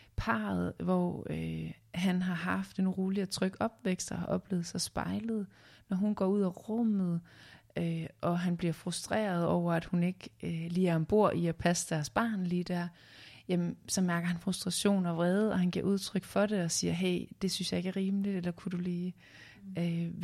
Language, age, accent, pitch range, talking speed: Danish, 30-49, native, 165-185 Hz, 205 wpm